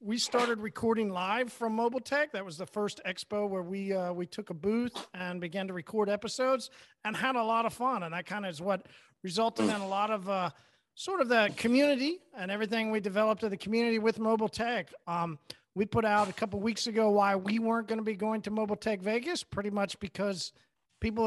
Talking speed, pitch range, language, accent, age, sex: 225 wpm, 195-235 Hz, English, American, 40-59, male